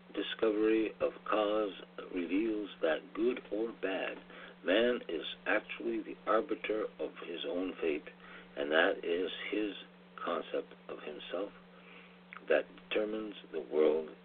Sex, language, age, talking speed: male, English, 60-79, 120 wpm